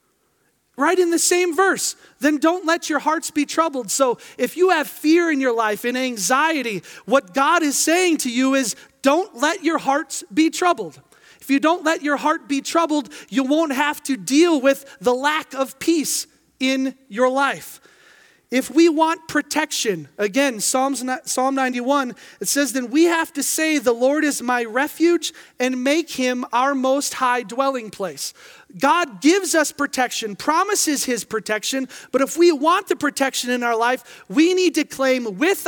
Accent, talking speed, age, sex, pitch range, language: American, 175 wpm, 30-49, male, 240-300 Hz, English